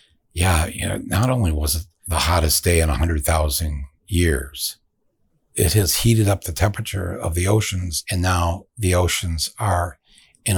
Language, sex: English, male